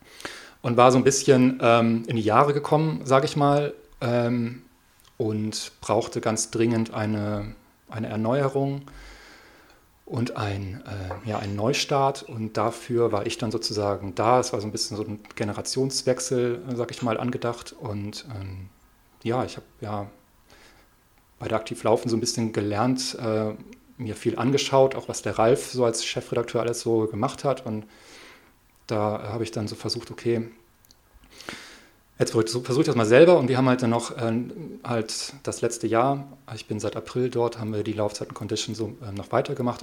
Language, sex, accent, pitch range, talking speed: German, male, German, 110-125 Hz, 170 wpm